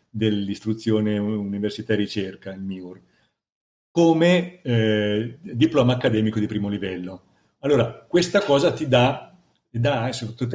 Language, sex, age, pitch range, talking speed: Italian, male, 50-69, 105-125 Hz, 110 wpm